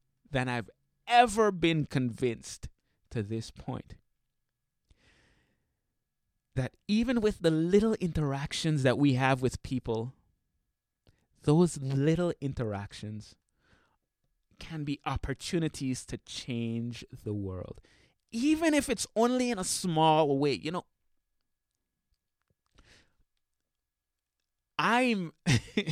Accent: American